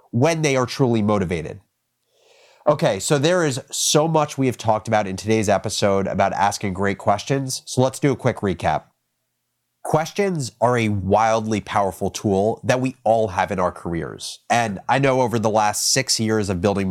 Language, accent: English, American